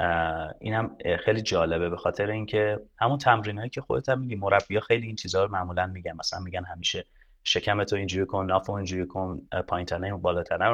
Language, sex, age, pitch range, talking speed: Persian, male, 30-49, 90-110 Hz, 190 wpm